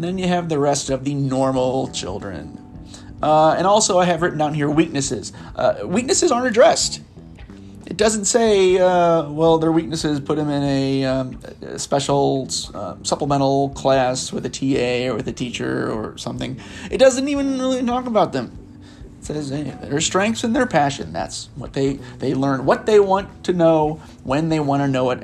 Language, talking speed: English, 190 wpm